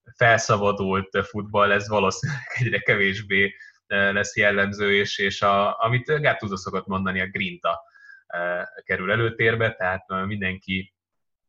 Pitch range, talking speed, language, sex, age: 95-115 Hz, 100 wpm, Hungarian, male, 20-39